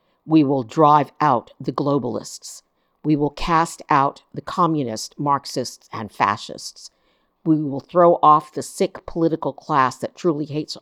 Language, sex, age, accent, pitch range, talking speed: English, female, 50-69, American, 130-165 Hz, 145 wpm